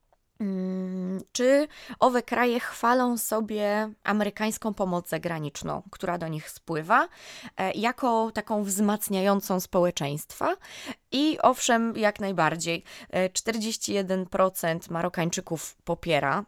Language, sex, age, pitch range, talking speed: English, female, 20-39, 175-220 Hz, 85 wpm